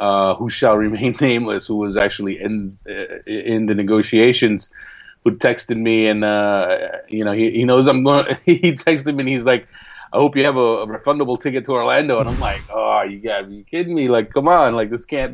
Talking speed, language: 220 wpm, English